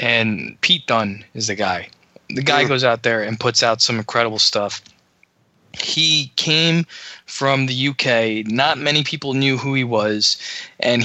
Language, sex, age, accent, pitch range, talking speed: English, male, 20-39, American, 110-140 Hz, 165 wpm